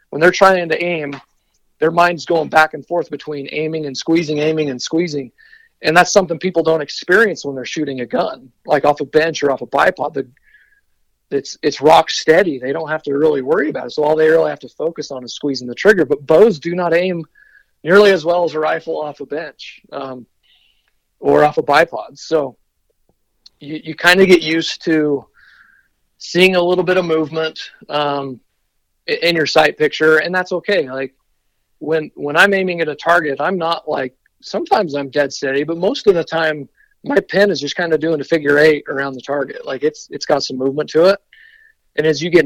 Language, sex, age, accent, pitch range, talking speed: English, male, 40-59, American, 145-180 Hz, 210 wpm